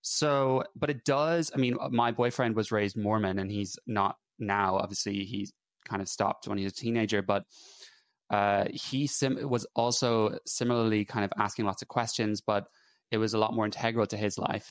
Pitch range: 100-115 Hz